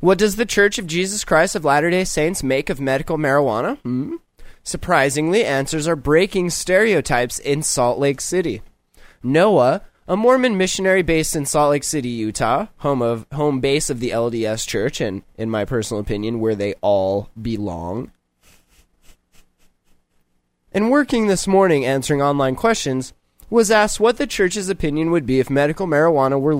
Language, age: English, 20-39